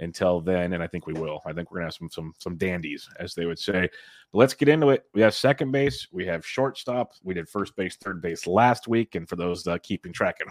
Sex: male